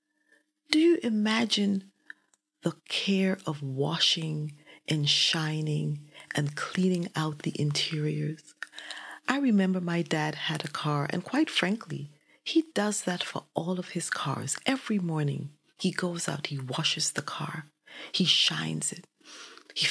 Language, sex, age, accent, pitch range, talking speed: English, female, 40-59, American, 150-200 Hz, 135 wpm